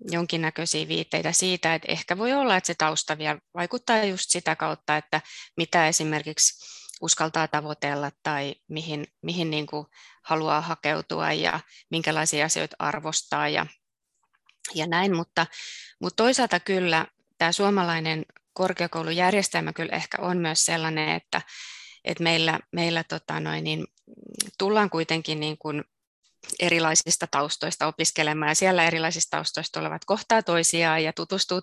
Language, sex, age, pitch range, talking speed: English, female, 20-39, 155-175 Hz, 115 wpm